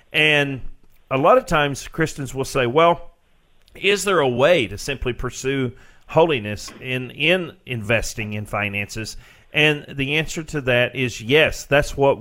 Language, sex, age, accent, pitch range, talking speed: English, male, 40-59, American, 120-145 Hz, 150 wpm